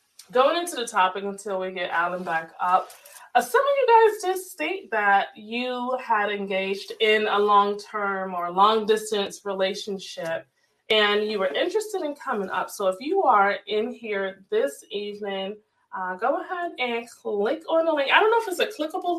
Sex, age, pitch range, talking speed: female, 20-39, 200-320 Hz, 180 wpm